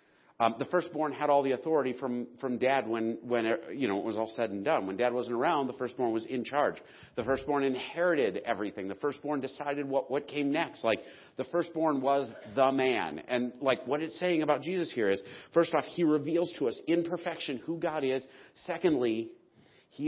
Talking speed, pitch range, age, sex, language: 205 wpm, 110-145 Hz, 40-59, male, English